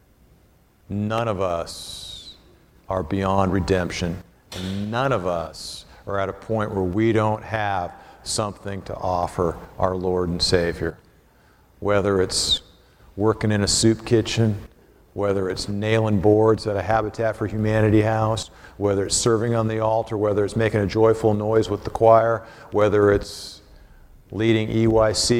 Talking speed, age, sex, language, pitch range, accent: 140 wpm, 50-69, male, English, 95-110 Hz, American